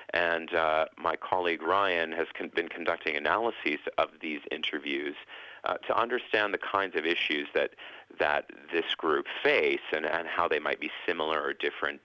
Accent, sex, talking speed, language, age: American, male, 170 wpm, English, 40-59